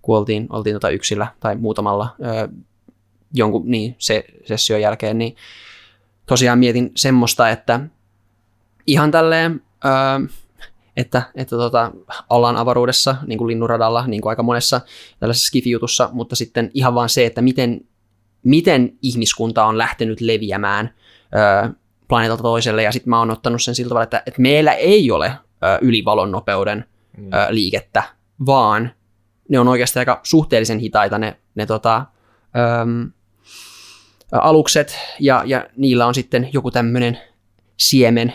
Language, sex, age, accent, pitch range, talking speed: Finnish, male, 20-39, native, 110-120 Hz, 130 wpm